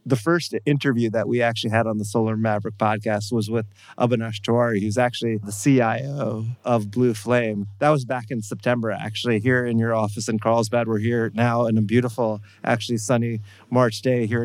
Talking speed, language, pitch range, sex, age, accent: 190 wpm, English, 110-125 Hz, male, 30-49, American